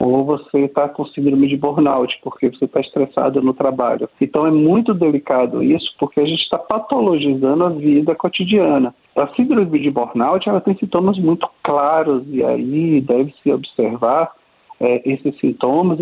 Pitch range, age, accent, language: 140-180 Hz, 50-69, Brazilian, Portuguese